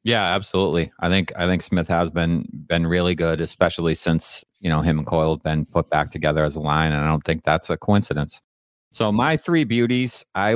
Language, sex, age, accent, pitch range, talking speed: English, male, 30-49, American, 80-95 Hz, 220 wpm